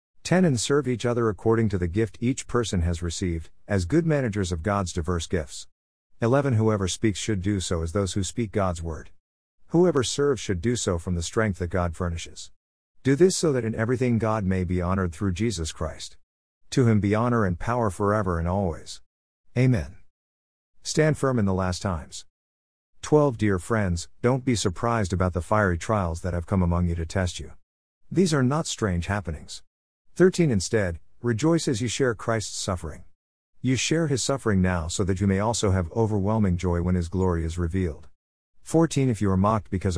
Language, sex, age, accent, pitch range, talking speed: English, male, 50-69, American, 85-115 Hz, 190 wpm